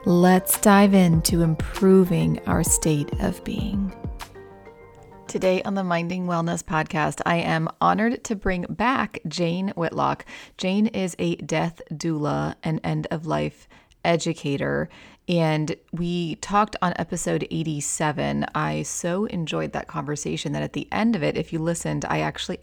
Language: English